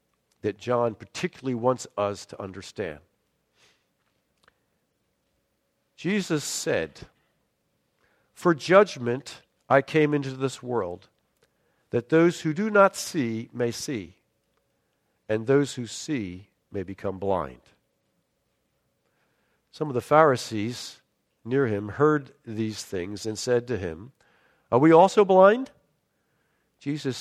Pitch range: 110-155 Hz